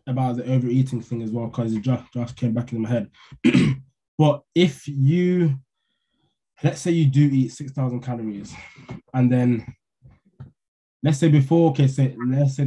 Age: 20-39